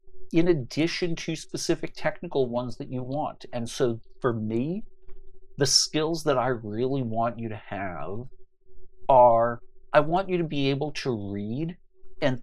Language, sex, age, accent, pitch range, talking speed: English, male, 50-69, American, 115-170 Hz, 155 wpm